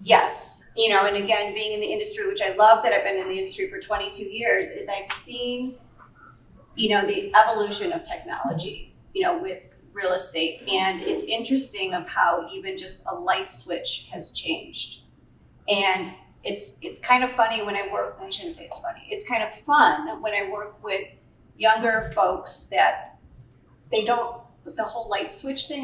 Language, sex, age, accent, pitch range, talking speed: English, female, 40-59, American, 205-270 Hz, 185 wpm